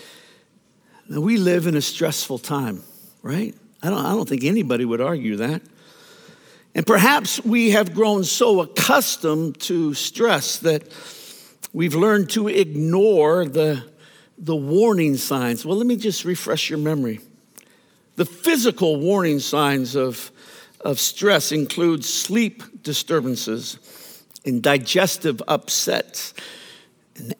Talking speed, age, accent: 125 wpm, 60-79, American